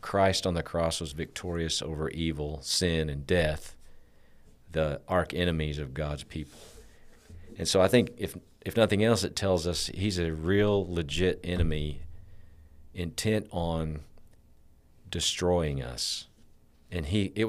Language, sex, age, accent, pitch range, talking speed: English, male, 50-69, American, 75-95 Hz, 135 wpm